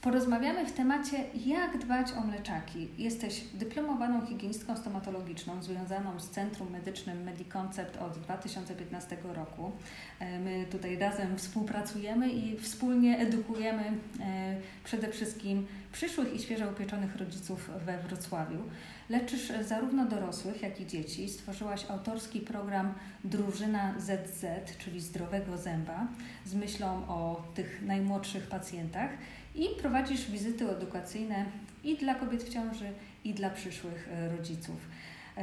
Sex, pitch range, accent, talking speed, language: female, 185-225 Hz, native, 115 wpm, Polish